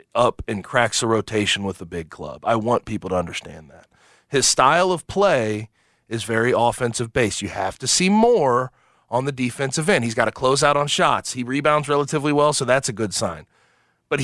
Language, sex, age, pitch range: English, male, 30-49, 135-190 Hz